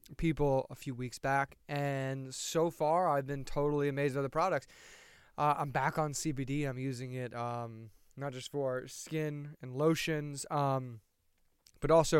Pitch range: 125-150 Hz